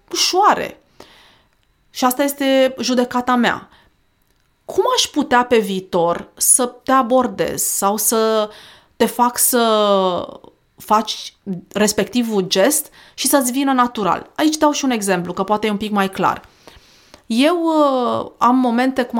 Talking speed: 135 wpm